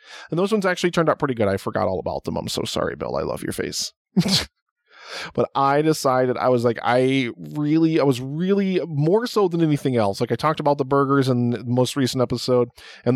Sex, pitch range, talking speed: male, 120-155 Hz, 225 wpm